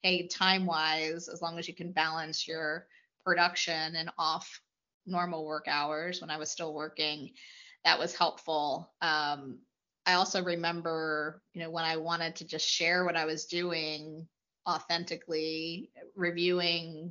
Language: English